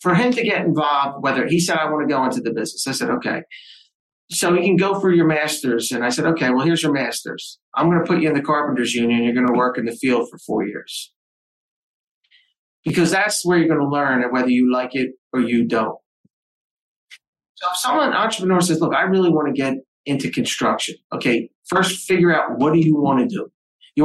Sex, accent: male, American